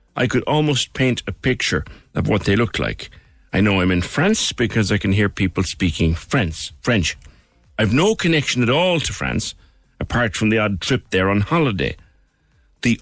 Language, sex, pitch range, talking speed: English, male, 90-125 Hz, 180 wpm